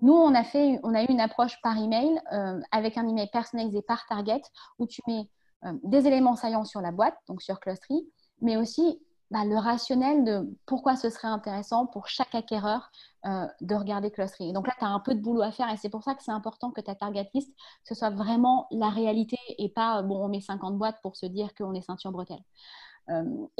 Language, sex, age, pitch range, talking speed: French, female, 30-49, 200-255 Hz, 225 wpm